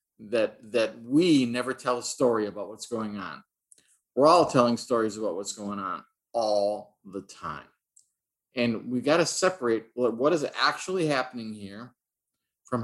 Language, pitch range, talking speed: English, 110-140 Hz, 155 wpm